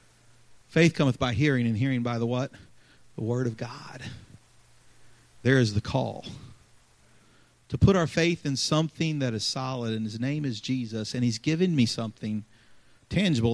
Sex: male